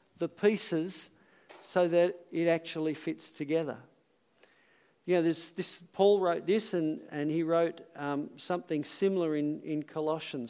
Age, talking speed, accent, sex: 50-69, 145 wpm, Australian, male